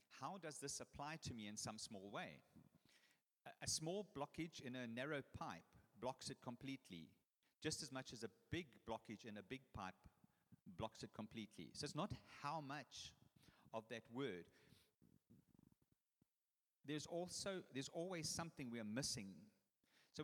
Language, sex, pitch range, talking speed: English, male, 115-155 Hz, 155 wpm